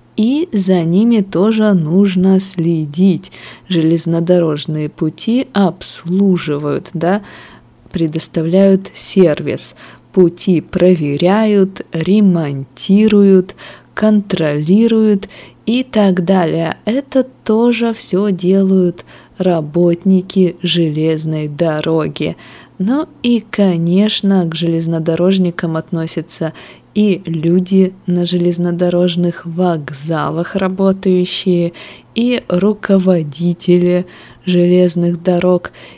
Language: Russian